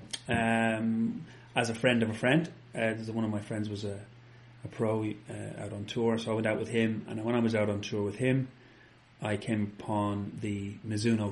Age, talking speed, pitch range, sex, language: 30-49, 205 wpm, 105-120 Hz, male, English